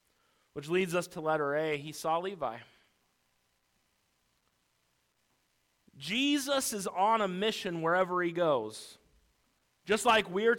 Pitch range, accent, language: 195-240 Hz, American, English